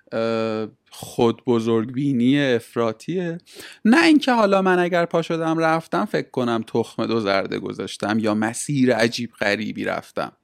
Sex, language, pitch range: male, Persian, 135-185 Hz